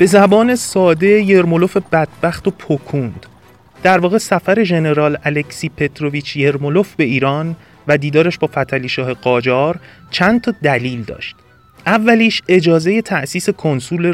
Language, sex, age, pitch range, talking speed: Persian, male, 30-49, 135-180 Hz, 125 wpm